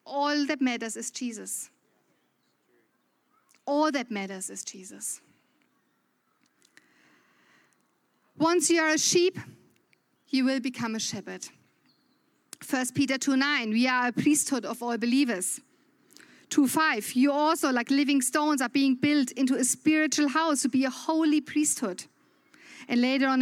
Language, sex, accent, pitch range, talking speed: English, female, German, 250-305 Hz, 135 wpm